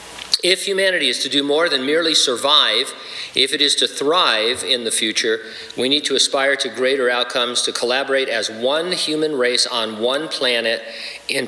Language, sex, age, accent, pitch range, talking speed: English, male, 50-69, American, 115-165 Hz, 180 wpm